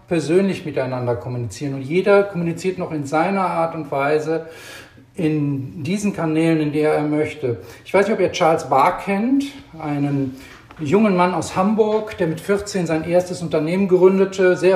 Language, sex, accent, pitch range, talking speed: German, male, German, 155-185 Hz, 165 wpm